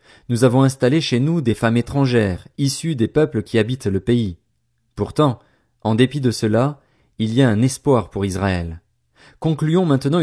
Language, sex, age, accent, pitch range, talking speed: French, male, 40-59, French, 110-135 Hz, 170 wpm